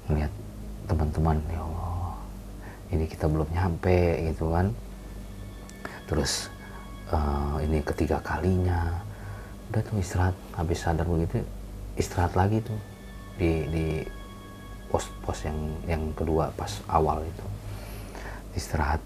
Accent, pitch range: native, 80-100 Hz